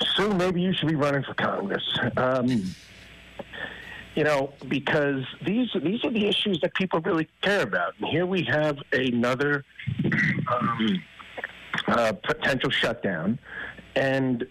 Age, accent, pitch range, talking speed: 50-69, American, 120-150 Hz, 130 wpm